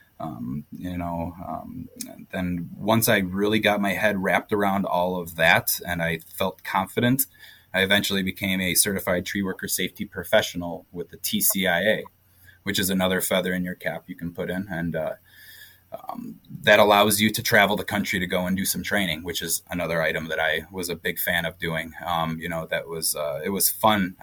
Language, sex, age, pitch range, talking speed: English, male, 20-39, 85-105 Hz, 200 wpm